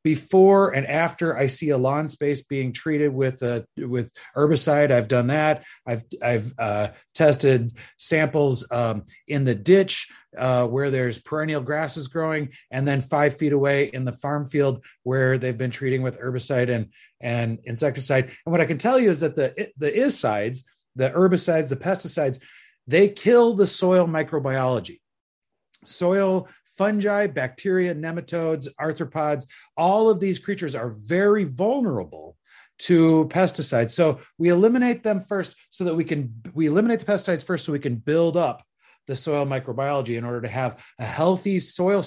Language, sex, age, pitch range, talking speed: English, male, 30-49, 130-185 Hz, 165 wpm